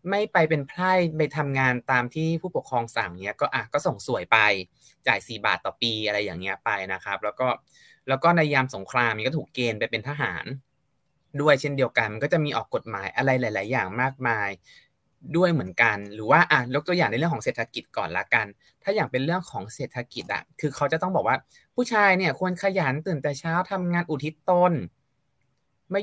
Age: 20-39